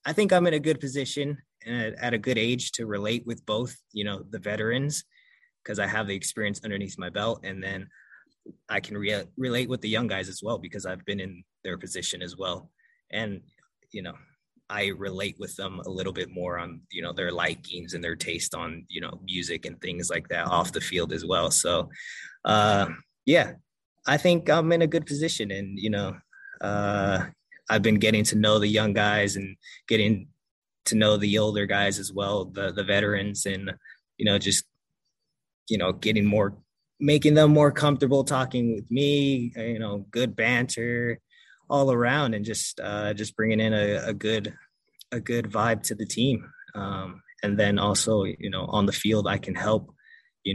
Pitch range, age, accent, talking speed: 100-120 Hz, 20-39, American, 195 wpm